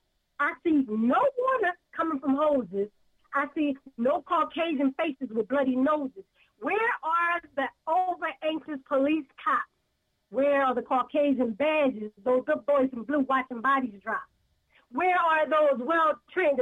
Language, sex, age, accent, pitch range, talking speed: English, female, 40-59, American, 260-340 Hz, 135 wpm